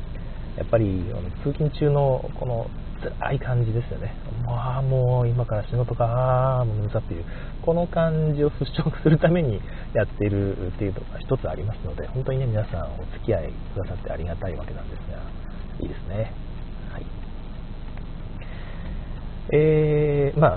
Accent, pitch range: native, 100-150 Hz